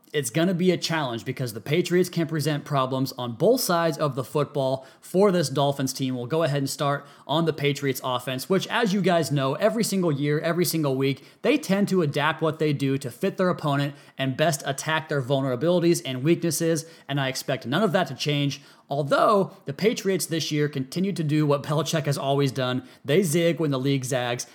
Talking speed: 215 wpm